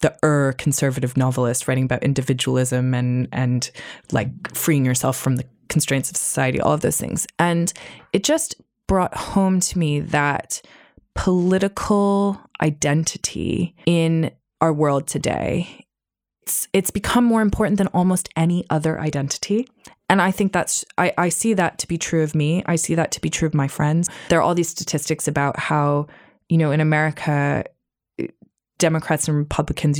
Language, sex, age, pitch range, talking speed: English, female, 20-39, 145-170 Hz, 160 wpm